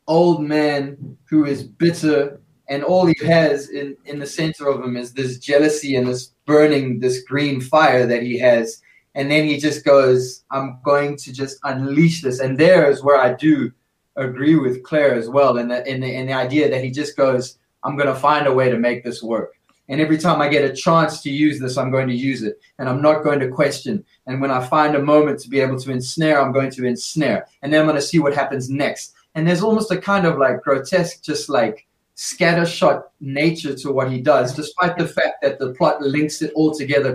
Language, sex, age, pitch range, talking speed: English, male, 20-39, 135-165 Hz, 225 wpm